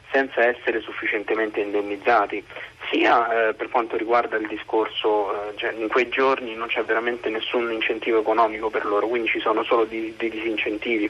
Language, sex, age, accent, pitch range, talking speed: Italian, male, 30-49, native, 110-120 Hz, 170 wpm